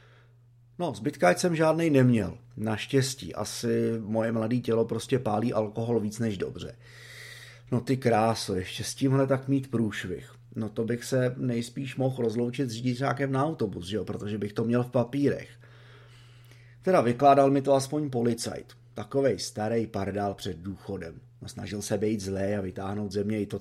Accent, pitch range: native, 105-130 Hz